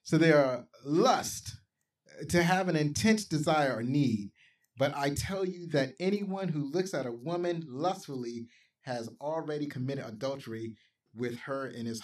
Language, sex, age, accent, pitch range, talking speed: English, male, 30-49, American, 115-150 Hz, 155 wpm